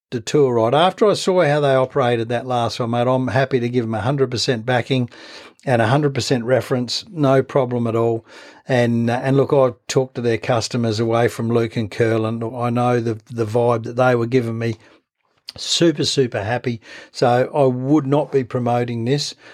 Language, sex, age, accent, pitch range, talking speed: English, male, 60-79, Australian, 120-155 Hz, 185 wpm